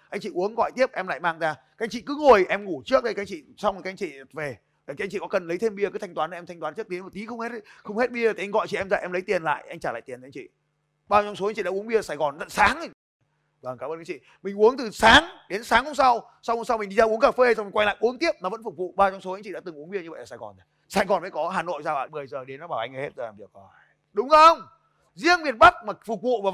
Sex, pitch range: male, 180-250 Hz